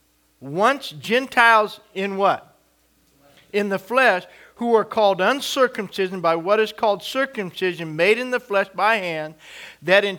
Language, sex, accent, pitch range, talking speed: English, male, American, 185-240 Hz, 140 wpm